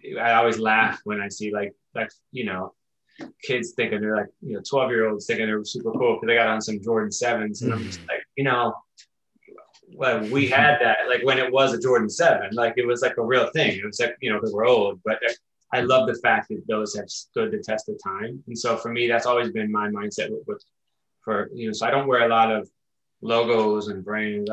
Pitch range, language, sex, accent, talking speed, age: 105-125 Hz, English, male, American, 240 wpm, 20-39